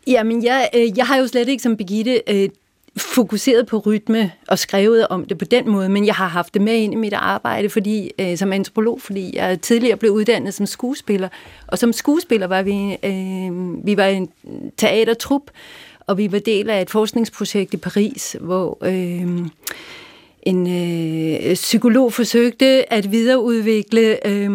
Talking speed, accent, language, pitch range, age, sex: 165 wpm, native, Danish, 190-230 Hz, 40-59, female